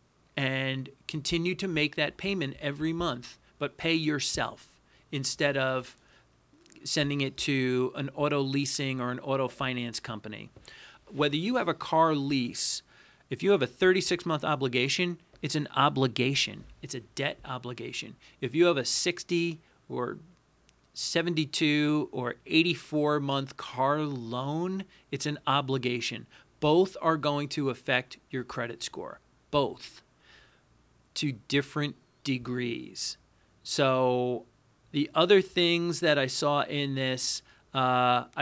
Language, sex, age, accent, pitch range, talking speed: English, male, 40-59, American, 130-155 Hz, 125 wpm